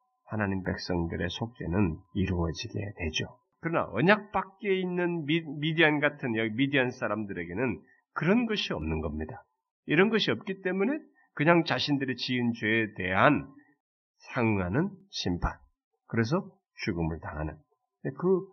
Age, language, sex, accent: 40-59, Korean, male, native